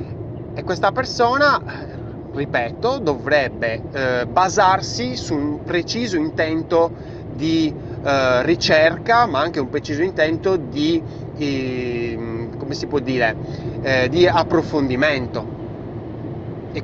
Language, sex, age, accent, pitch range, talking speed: Italian, male, 30-49, native, 120-160 Hz, 105 wpm